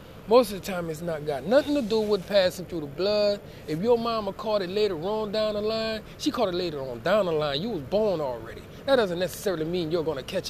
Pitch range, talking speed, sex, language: 185-240 Hz, 255 wpm, male, English